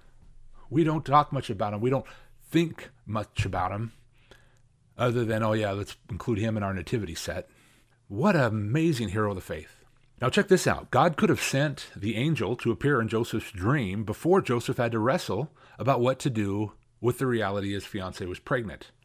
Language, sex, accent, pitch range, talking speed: English, male, American, 105-130 Hz, 190 wpm